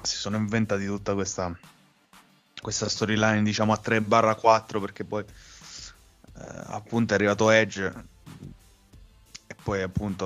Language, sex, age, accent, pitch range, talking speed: Italian, male, 20-39, native, 95-110 Hz, 130 wpm